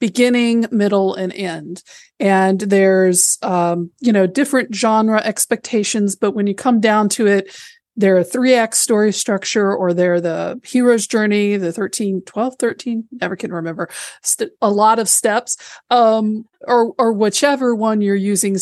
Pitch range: 190-230 Hz